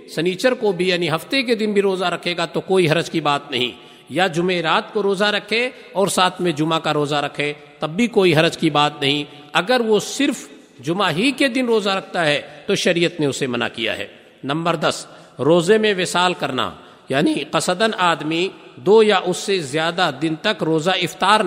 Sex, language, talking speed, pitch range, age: male, Urdu, 200 wpm, 160-205 Hz, 50-69